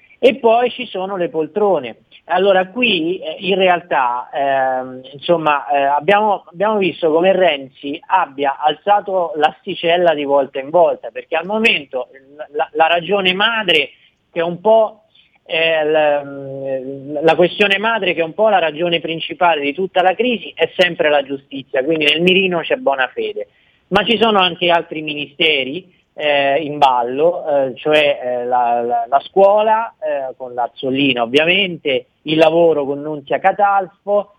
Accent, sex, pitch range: native, male, 145-200 Hz